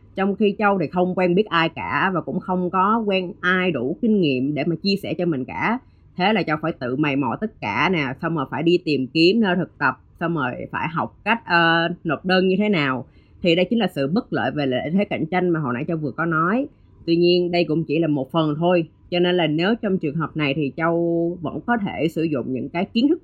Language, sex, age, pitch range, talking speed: Vietnamese, female, 20-39, 150-190 Hz, 265 wpm